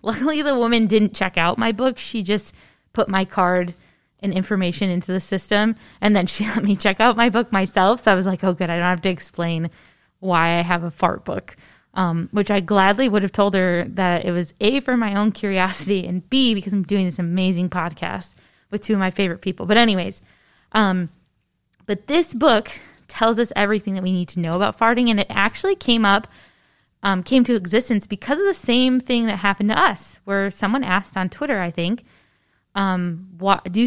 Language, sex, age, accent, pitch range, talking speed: English, female, 20-39, American, 185-235 Hz, 210 wpm